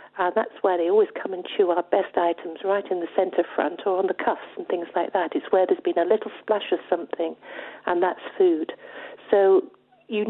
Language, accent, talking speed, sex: English, British, 220 wpm, female